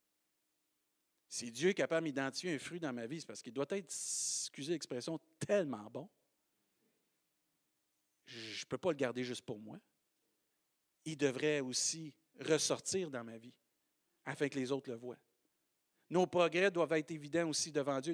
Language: French